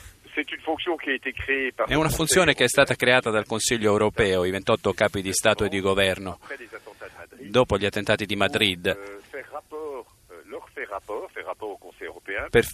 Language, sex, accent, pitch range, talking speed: Italian, male, native, 100-125 Hz, 115 wpm